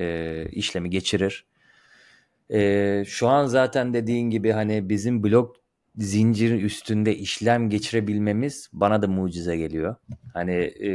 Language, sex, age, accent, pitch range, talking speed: Turkish, male, 30-49, native, 95-115 Hz, 105 wpm